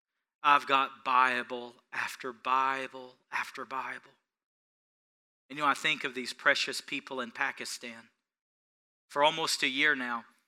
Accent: American